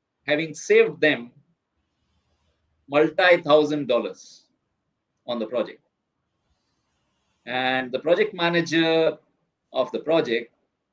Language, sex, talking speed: English, male, 80 wpm